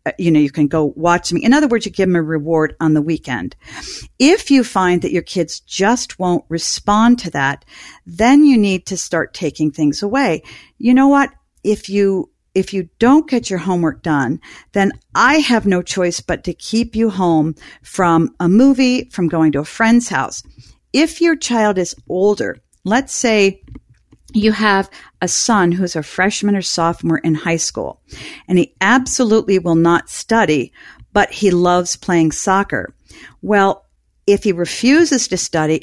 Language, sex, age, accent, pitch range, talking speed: English, female, 50-69, American, 160-220 Hz, 175 wpm